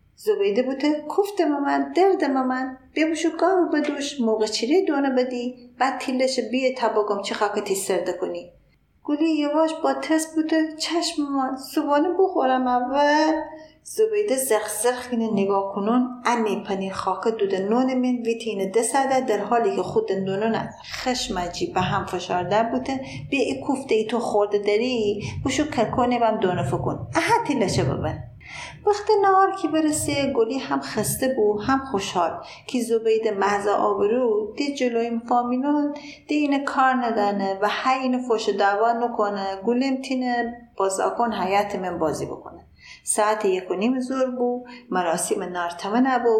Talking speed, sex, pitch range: 145 wpm, female, 210-280 Hz